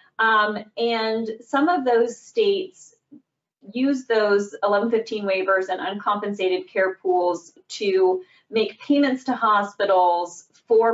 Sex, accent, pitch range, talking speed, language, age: female, American, 190-230 Hz, 110 wpm, English, 30-49